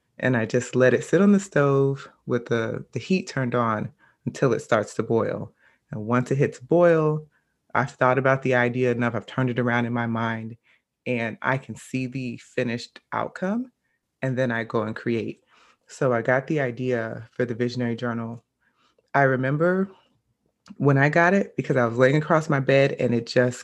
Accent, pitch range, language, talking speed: American, 120-140 Hz, English, 195 wpm